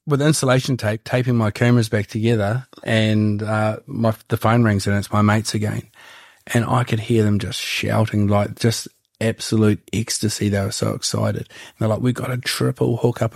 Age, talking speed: 30-49, 190 wpm